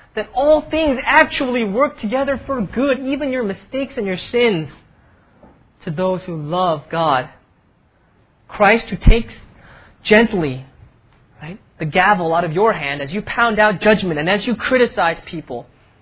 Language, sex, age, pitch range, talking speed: English, male, 20-39, 150-220 Hz, 145 wpm